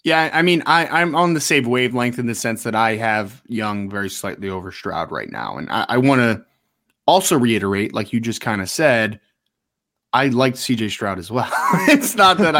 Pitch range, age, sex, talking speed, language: 110-130 Hz, 20-39, male, 210 wpm, English